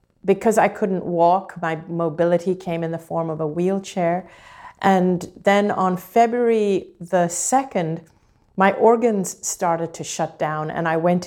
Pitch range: 170-200 Hz